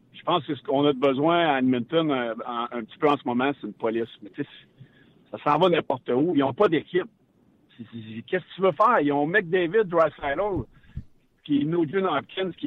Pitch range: 135-185 Hz